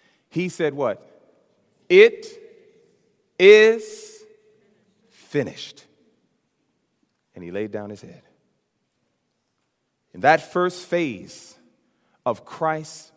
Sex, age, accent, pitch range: male, 40-59, American, 135-205 Hz